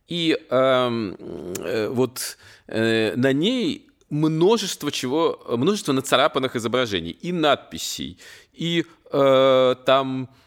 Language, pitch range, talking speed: Russian, 110-145 Hz, 90 wpm